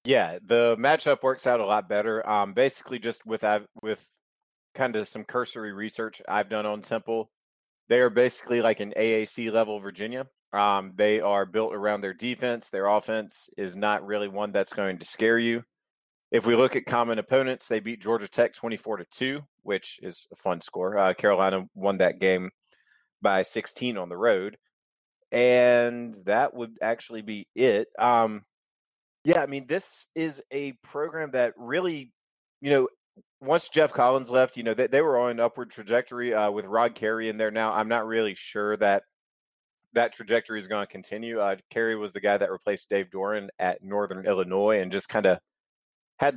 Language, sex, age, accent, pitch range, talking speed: English, male, 30-49, American, 105-125 Hz, 180 wpm